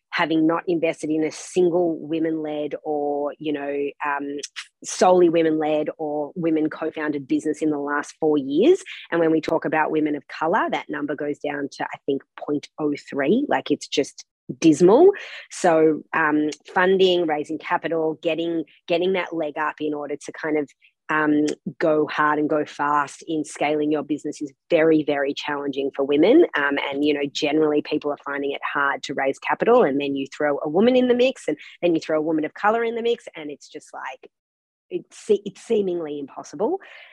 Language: English